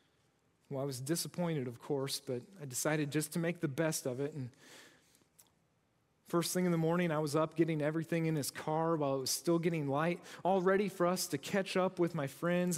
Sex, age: male, 40-59